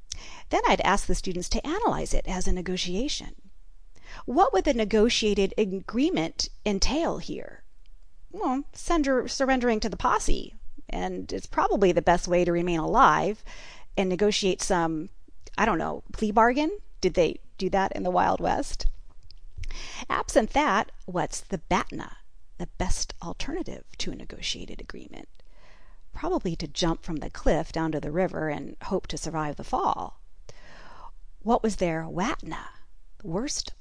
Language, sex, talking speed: English, female, 145 wpm